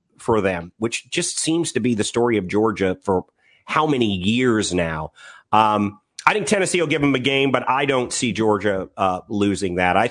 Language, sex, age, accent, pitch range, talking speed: English, male, 30-49, American, 95-125 Hz, 200 wpm